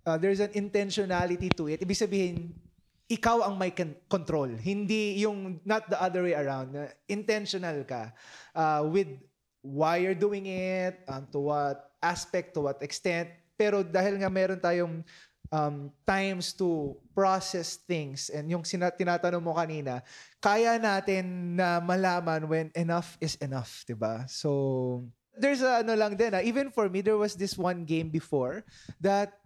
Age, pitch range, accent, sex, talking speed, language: 20-39, 155-195 Hz, Filipino, male, 150 wpm, English